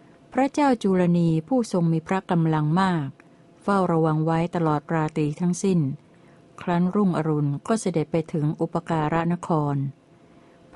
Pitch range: 155-180 Hz